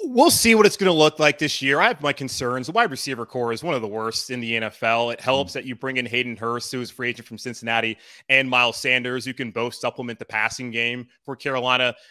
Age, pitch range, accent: 30-49, 120-135 Hz, American